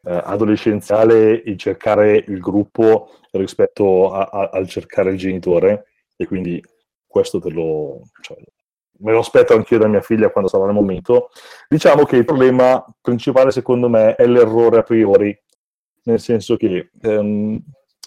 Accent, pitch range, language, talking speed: native, 100-130 Hz, Italian, 140 wpm